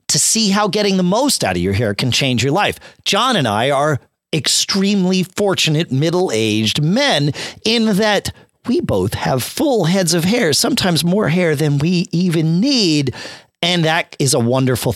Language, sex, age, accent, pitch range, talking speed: English, male, 40-59, American, 125-195 Hz, 175 wpm